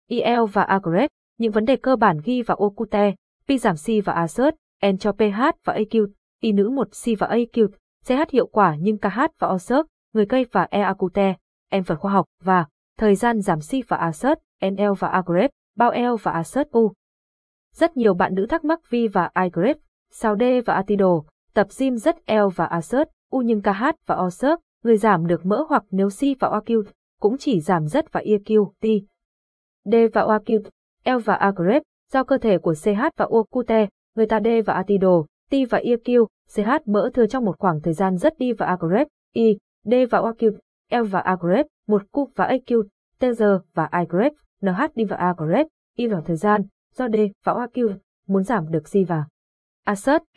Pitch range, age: 190-245 Hz, 20-39